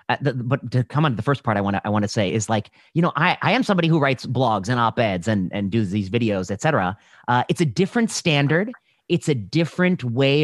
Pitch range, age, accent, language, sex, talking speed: 110-150 Hz, 30-49, American, English, male, 255 wpm